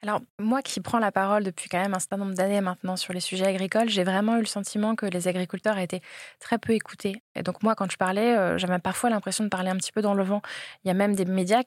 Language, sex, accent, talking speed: French, female, French, 285 wpm